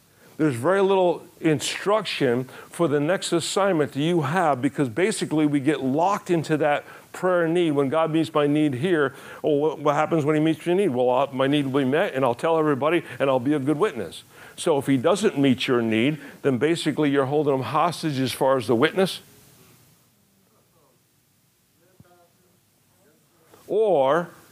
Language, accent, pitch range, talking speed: English, American, 140-185 Hz, 170 wpm